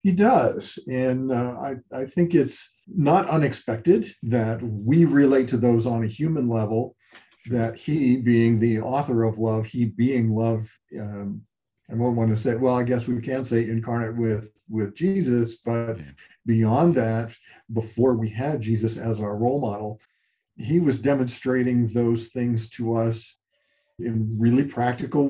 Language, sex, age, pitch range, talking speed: English, male, 50-69, 115-135 Hz, 155 wpm